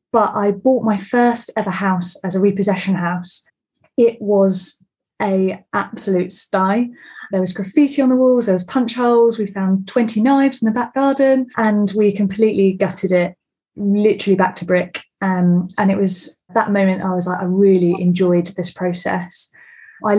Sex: female